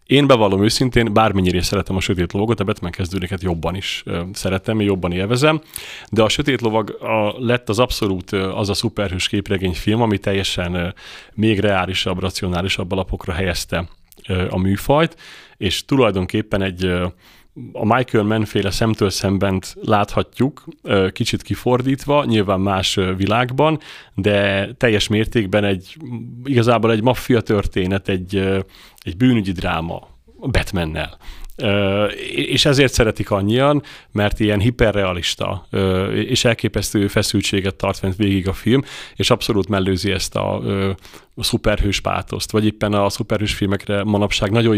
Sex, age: male, 30-49